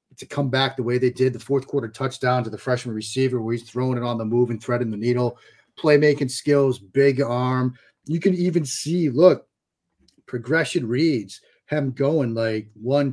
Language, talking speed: English, 190 wpm